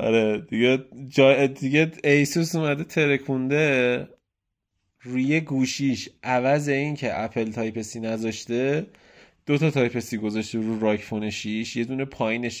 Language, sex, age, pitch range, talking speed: Persian, male, 20-39, 110-140 Hz, 115 wpm